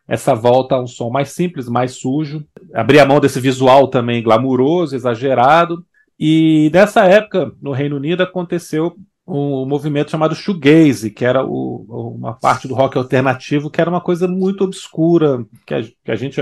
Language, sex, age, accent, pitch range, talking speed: Portuguese, male, 40-59, Brazilian, 120-160 Hz, 160 wpm